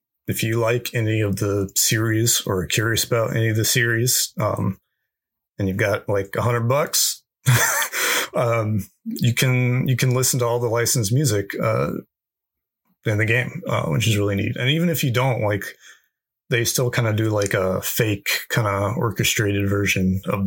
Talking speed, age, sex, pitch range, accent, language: 180 wpm, 30-49, male, 100-125 Hz, American, English